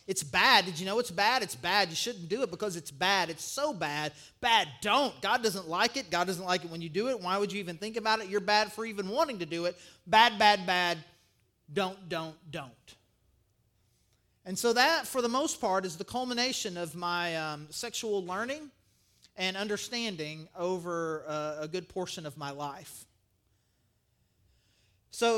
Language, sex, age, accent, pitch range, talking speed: English, male, 30-49, American, 155-195 Hz, 190 wpm